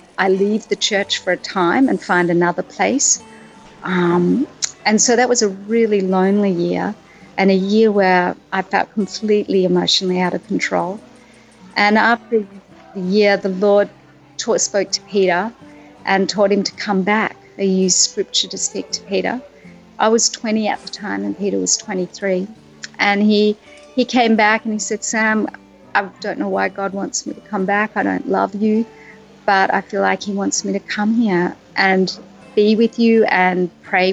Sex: female